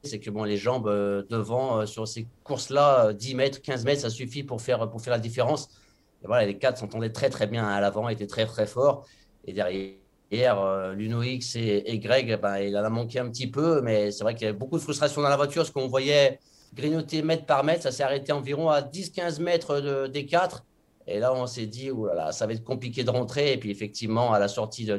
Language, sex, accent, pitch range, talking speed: French, male, French, 110-140 Hz, 245 wpm